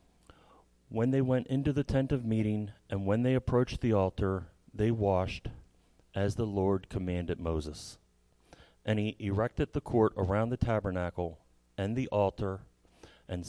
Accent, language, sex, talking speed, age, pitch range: American, English, male, 145 wpm, 30-49, 90-115 Hz